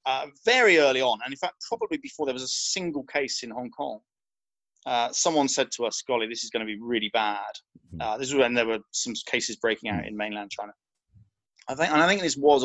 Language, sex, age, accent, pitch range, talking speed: English, male, 30-49, British, 110-155 Hz, 235 wpm